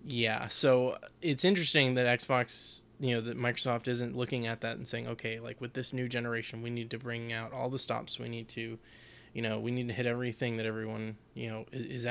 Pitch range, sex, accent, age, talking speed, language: 115-125 Hz, male, American, 20-39, 225 wpm, English